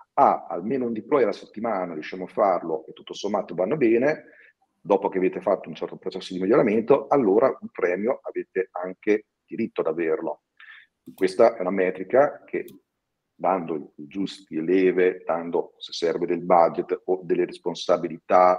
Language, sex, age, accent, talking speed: Italian, male, 40-59, native, 155 wpm